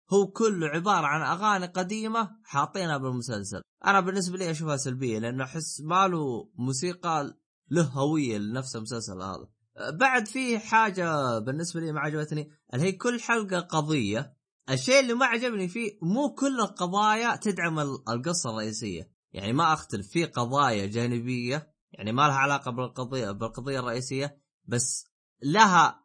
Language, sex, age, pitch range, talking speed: Arabic, male, 20-39, 120-180 Hz, 140 wpm